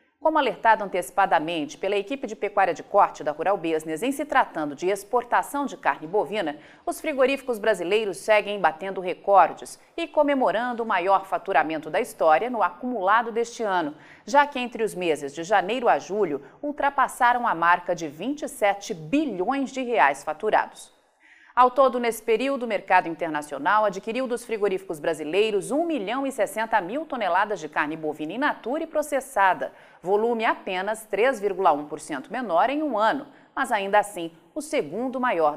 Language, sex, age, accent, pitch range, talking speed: Portuguese, female, 40-59, Brazilian, 180-270 Hz, 150 wpm